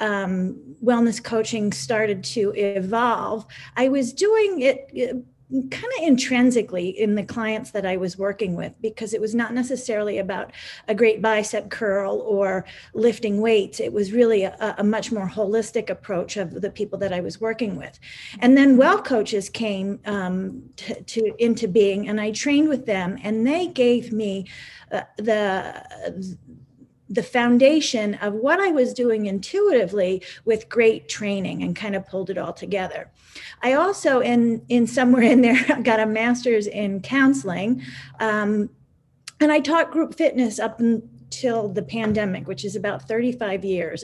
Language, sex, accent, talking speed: English, female, American, 155 wpm